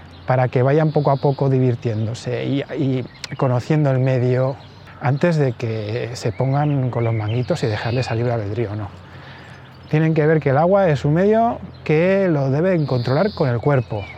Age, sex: 20-39, male